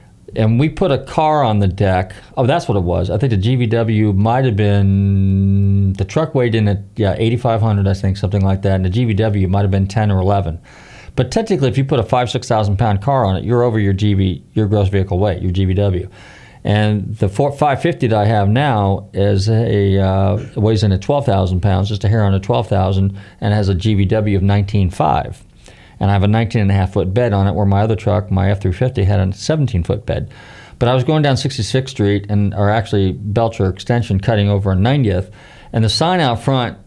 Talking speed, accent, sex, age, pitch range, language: 220 wpm, American, male, 40-59, 100-120 Hz, English